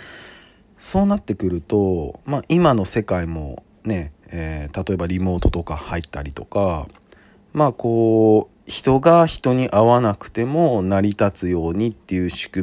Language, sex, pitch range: Japanese, male, 85-125 Hz